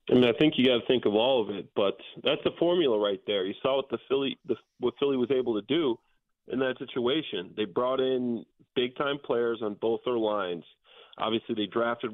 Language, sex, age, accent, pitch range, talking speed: English, male, 30-49, American, 110-135 Hz, 225 wpm